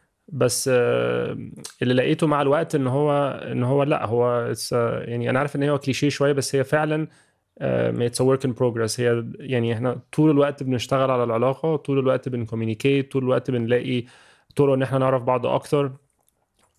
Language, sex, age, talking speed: Arabic, male, 20-39, 160 wpm